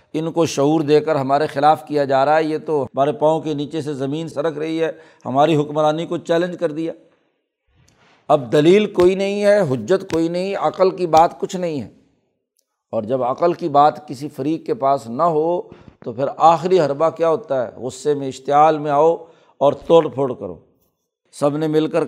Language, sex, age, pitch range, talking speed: Urdu, male, 60-79, 140-175 Hz, 200 wpm